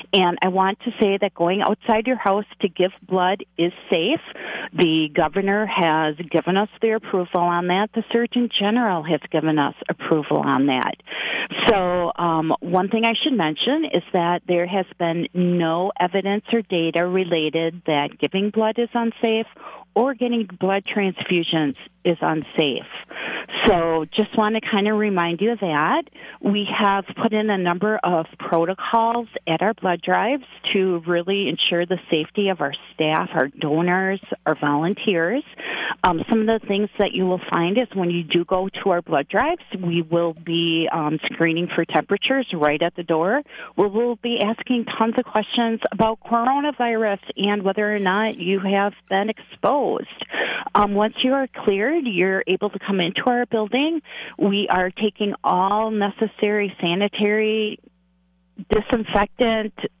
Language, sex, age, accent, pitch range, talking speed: English, female, 40-59, American, 175-220 Hz, 160 wpm